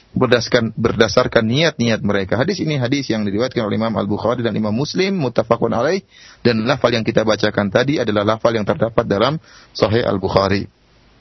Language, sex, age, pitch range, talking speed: Malay, male, 30-49, 115-150 Hz, 160 wpm